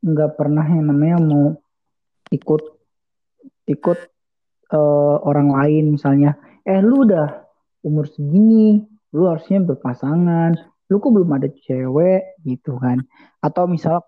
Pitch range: 145-165 Hz